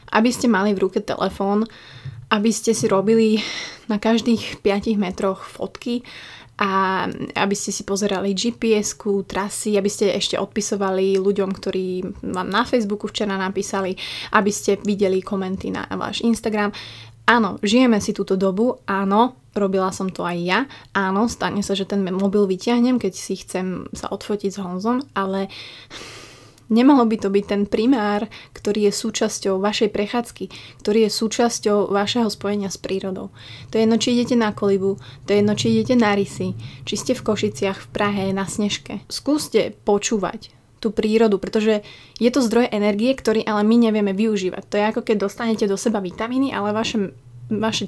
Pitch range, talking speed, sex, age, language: 195-225 Hz, 165 wpm, female, 20-39, Slovak